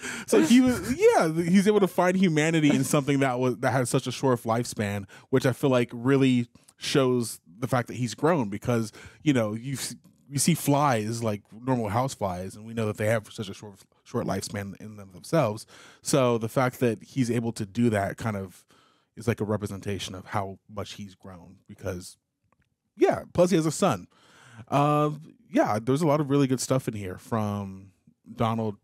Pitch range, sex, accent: 105-135 Hz, male, American